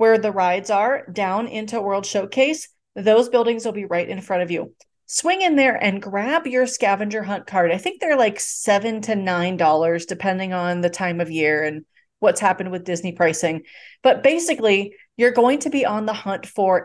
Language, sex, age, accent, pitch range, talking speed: English, female, 30-49, American, 190-235 Hz, 195 wpm